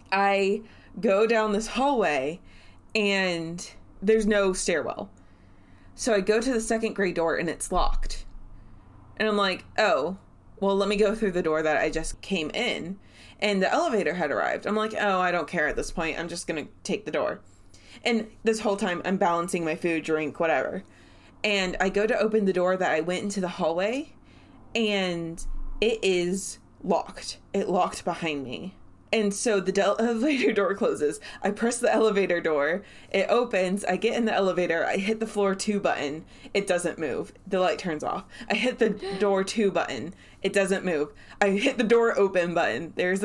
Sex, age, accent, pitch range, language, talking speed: female, 20-39, American, 170-215 Hz, English, 185 wpm